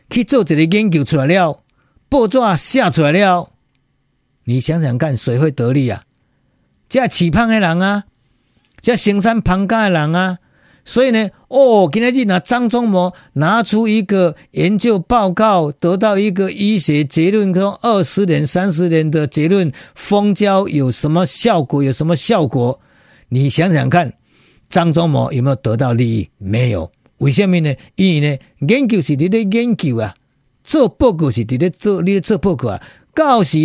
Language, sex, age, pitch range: Chinese, male, 50-69, 140-200 Hz